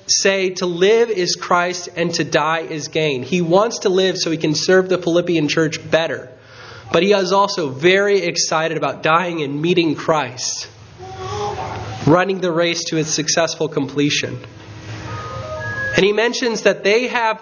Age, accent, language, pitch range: 20-39, American, English, 145-195 Hz